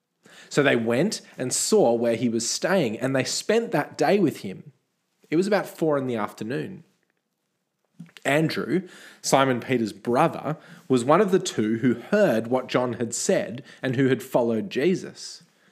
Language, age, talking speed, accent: English, 20-39, 165 wpm, Australian